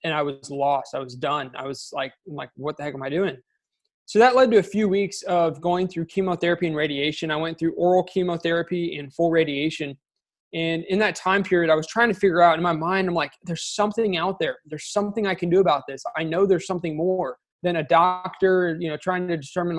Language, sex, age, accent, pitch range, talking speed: English, male, 20-39, American, 155-185 Hz, 235 wpm